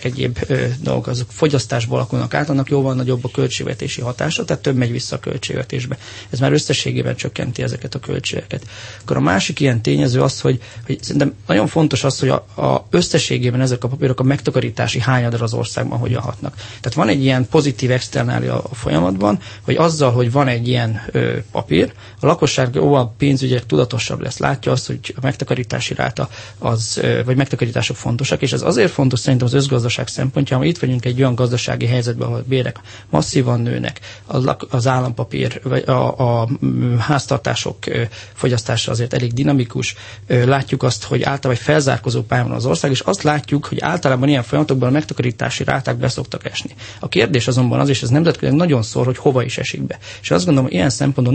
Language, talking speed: Hungarian, 175 wpm